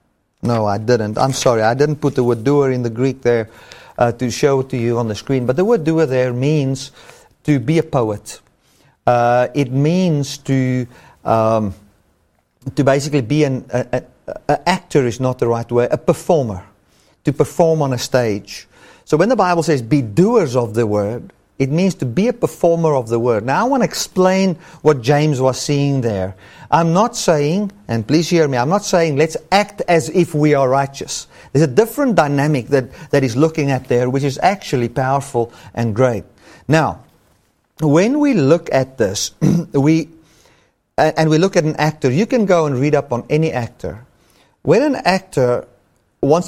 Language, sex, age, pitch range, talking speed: English, male, 40-59, 125-160 Hz, 190 wpm